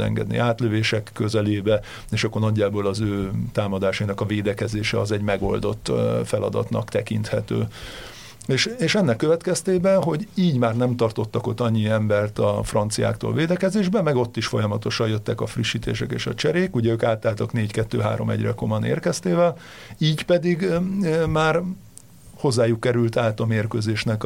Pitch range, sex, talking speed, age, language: 110-135 Hz, male, 135 wpm, 50-69, Hungarian